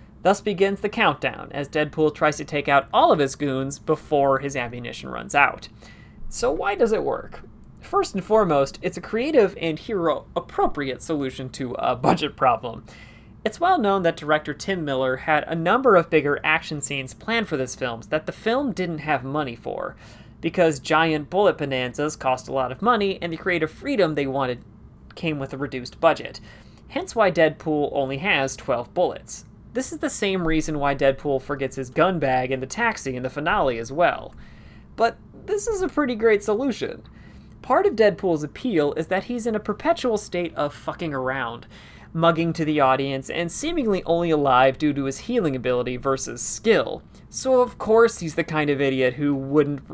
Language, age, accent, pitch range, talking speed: English, 30-49, American, 135-190 Hz, 185 wpm